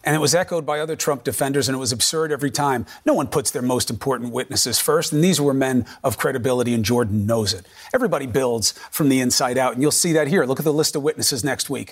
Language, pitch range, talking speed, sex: English, 130-170 Hz, 255 wpm, male